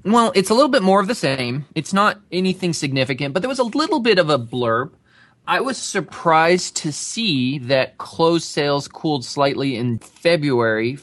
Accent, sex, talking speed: American, male, 185 wpm